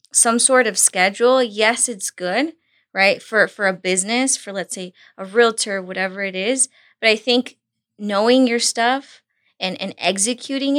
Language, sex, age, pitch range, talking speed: English, female, 20-39, 200-255 Hz, 160 wpm